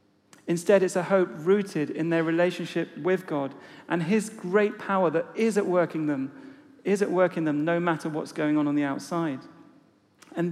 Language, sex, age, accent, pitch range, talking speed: English, male, 40-59, British, 155-185 Hz, 190 wpm